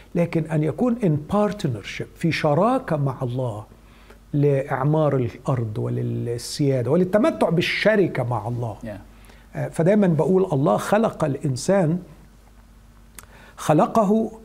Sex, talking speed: male, 90 wpm